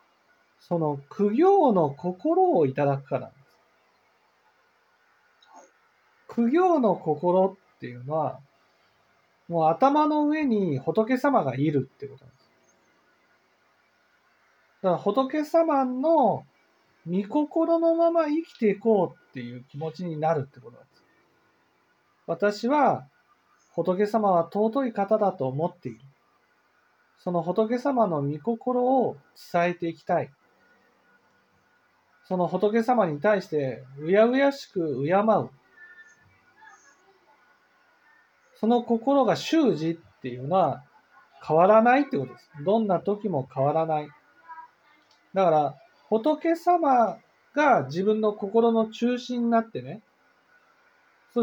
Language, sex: Japanese, male